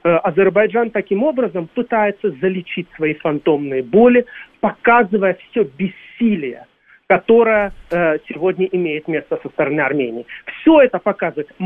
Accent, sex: native, male